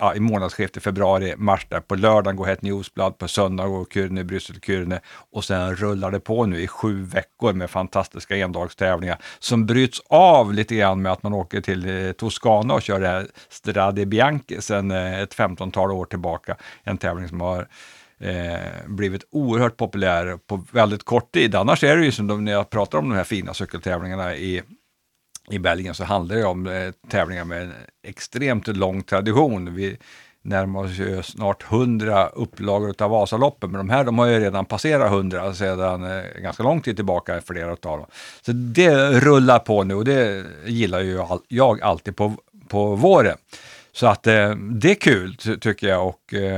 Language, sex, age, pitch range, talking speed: Swedish, male, 60-79, 95-110 Hz, 180 wpm